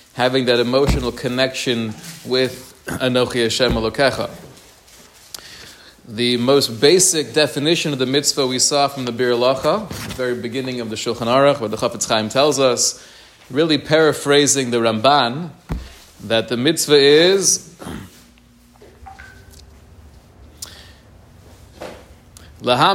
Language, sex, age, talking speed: English, male, 30-49, 105 wpm